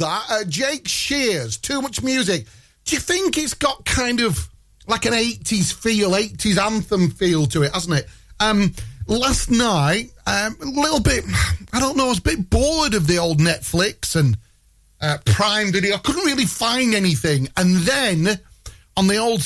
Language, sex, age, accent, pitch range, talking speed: English, male, 40-59, British, 150-220 Hz, 180 wpm